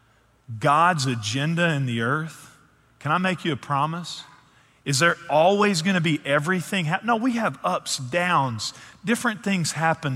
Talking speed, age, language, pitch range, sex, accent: 150 wpm, 40-59, English, 125-170 Hz, male, American